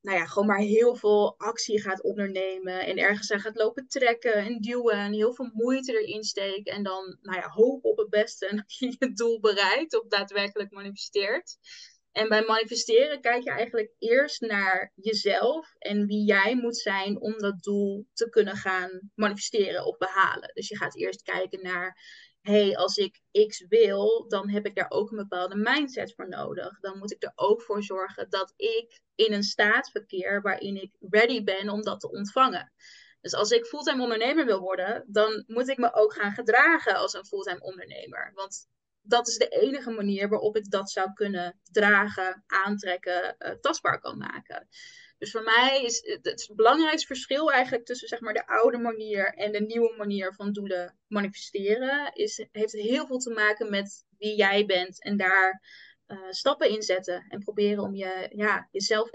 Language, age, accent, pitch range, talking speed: Dutch, 20-39, Dutch, 195-240 Hz, 180 wpm